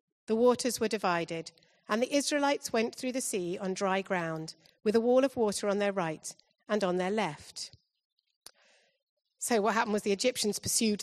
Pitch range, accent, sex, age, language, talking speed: 185-240 Hz, British, female, 40-59, English, 180 wpm